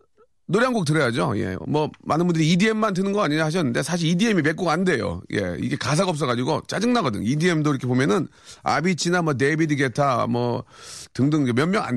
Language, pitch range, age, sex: Korean, 110-160 Hz, 40-59, male